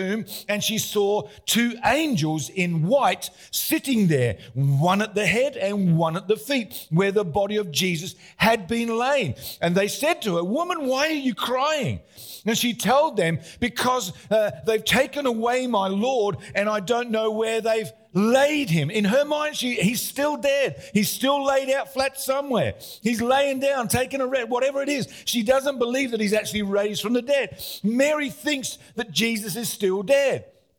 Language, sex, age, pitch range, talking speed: English, male, 50-69, 190-265 Hz, 180 wpm